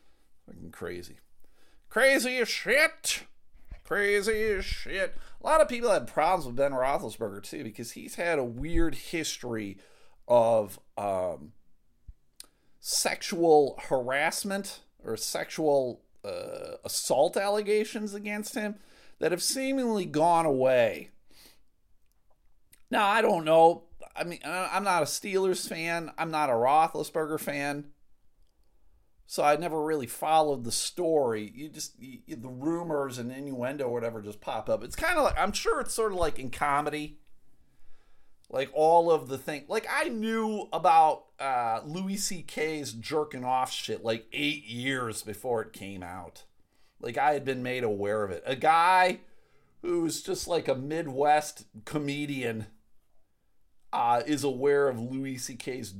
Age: 40-59